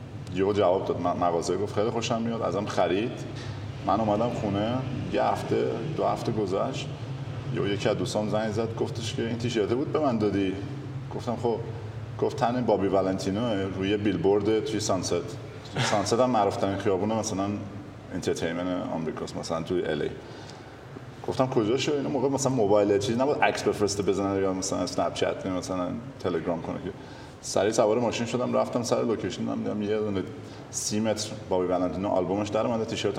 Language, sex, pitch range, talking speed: Persian, male, 100-125 Hz, 165 wpm